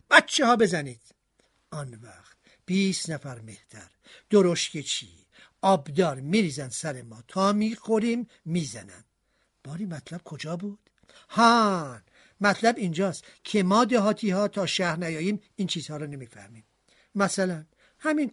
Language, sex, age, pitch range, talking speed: Persian, male, 50-69, 155-225 Hz, 120 wpm